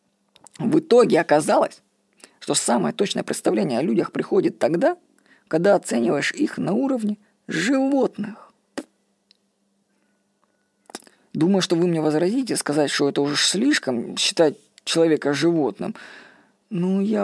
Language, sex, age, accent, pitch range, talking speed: Russian, female, 20-39, native, 165-230 Hz, 110 wpm